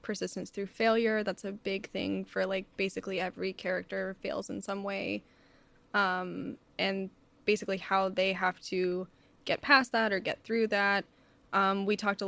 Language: English